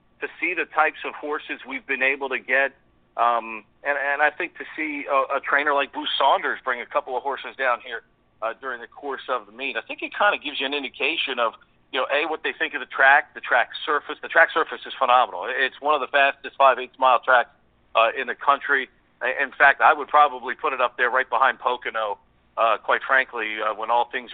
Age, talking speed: 50-69, 240 wpm